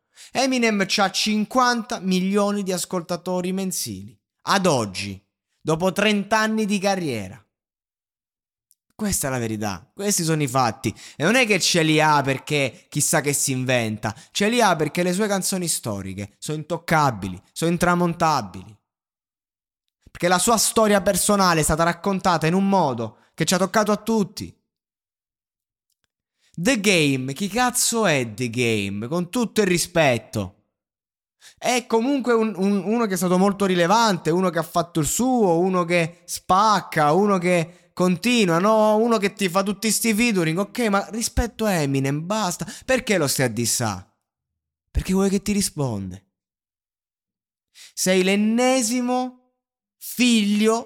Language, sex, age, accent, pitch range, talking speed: Italian, male, 20-39, native, 135-210 Hz, 140 wpm